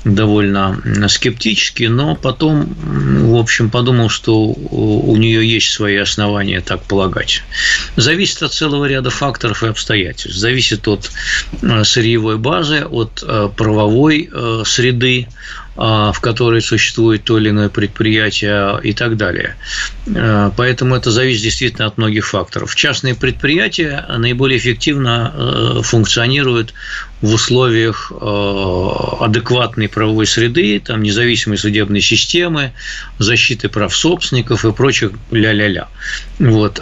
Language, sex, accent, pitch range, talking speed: Russian, male, native, 110-130 Hz, 110 wpm